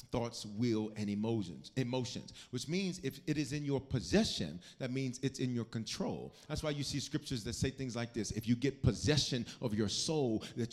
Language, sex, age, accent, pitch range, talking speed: English, male, 40-59, American, 120-155 Hz, 205 wpm